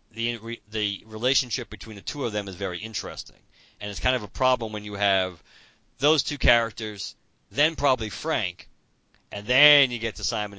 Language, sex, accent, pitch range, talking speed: English, male, American, 95-115 Hz, 180 wpm